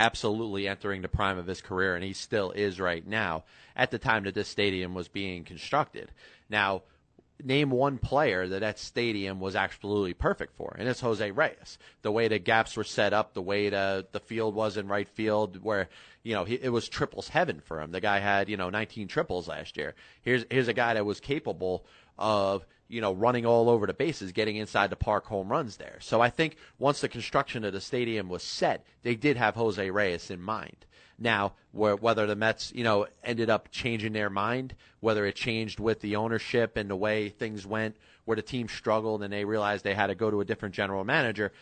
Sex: male